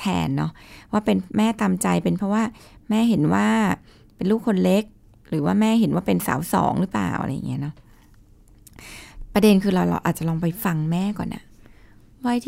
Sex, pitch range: female, 150-215 Hz